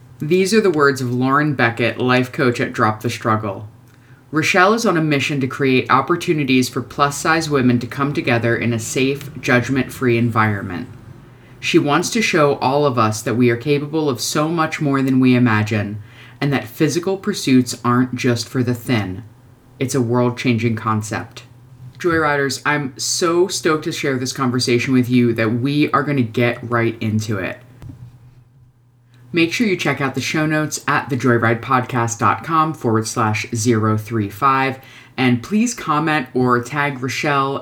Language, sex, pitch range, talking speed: English, female, 120-140 Hz, 165 wpm